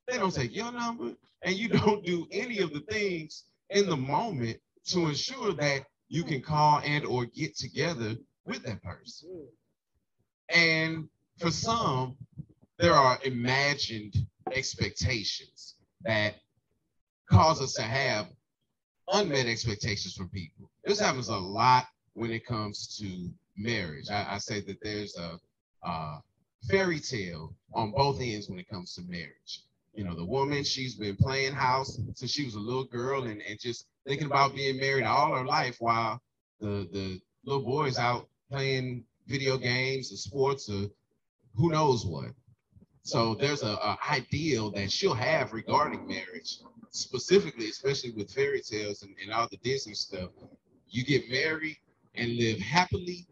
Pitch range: 110-150 Hz